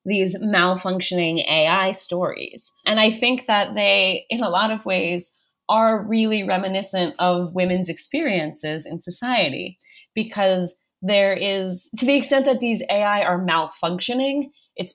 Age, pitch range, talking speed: 20-39, 175-215 Hz, 135 wpm